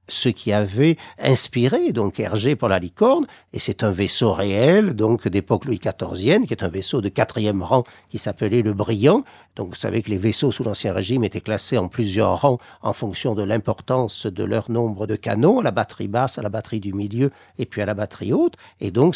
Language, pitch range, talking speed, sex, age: French, 105-130 Hz, 215 wpm, male, 50-69